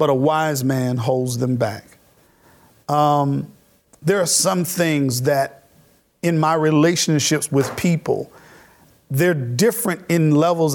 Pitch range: 140-190 Hz